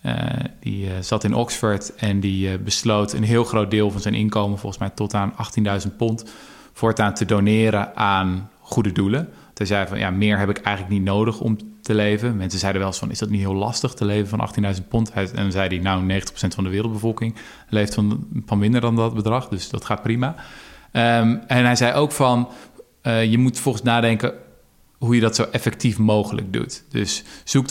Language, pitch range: Dutch, 100-115 Hz